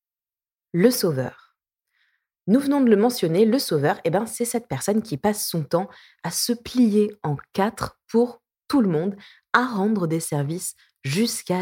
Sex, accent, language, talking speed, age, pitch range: female, French, French, 160 wpm, 20-39, 160-230 Hz